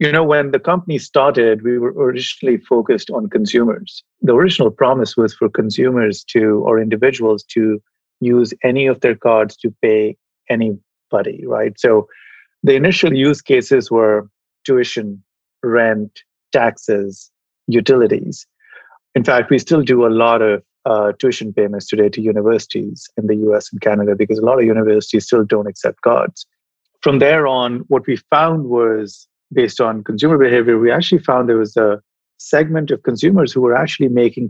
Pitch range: 110-140 Hz